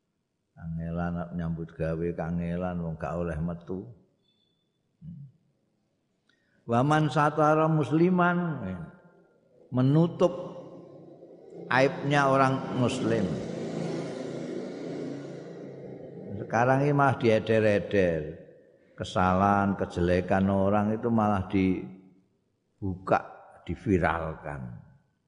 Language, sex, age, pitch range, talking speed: Indonesian, male, 50-69, 95-130 Hz, 60 wpm